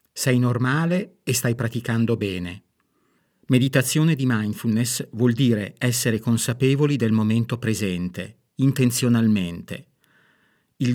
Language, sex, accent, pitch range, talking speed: Italian, male, native, 110-130 Hz, 100 wpm